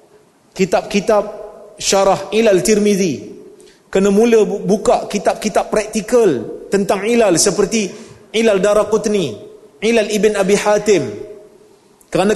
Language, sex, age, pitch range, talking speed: Malay, male, 40-59, 170-215 Hz, 90 wpm